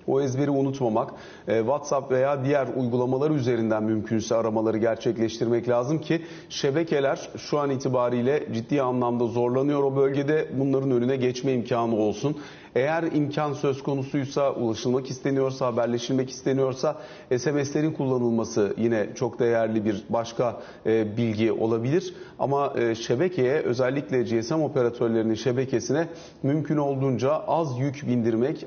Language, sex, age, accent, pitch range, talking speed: Turkish, male, 40-59, native, 125-150 Hz, 115 wpm